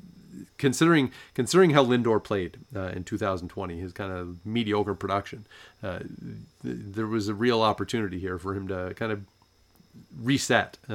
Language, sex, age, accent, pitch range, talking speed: English, male, 40-59, American, 95-110 Hz, 150 wpm